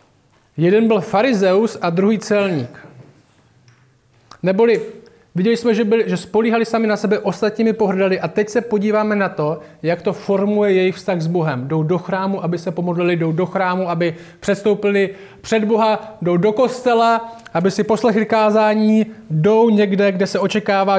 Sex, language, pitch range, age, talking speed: male, Czech, 180-220 Hz, 20-39, 160 wpm